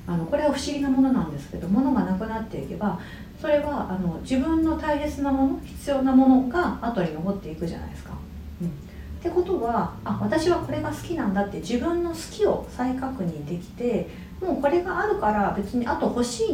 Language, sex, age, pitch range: Japanese, female, 40-59, 175-265 Hz